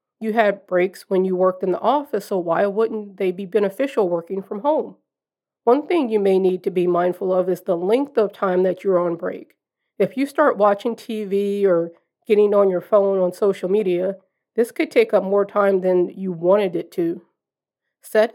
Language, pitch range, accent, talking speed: English, 185-220 Hz, American, 200 wpm